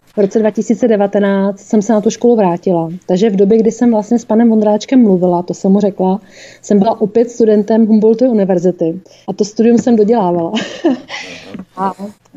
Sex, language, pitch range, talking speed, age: female, Czech, 190-225 Hz, 170 wpm, 30-49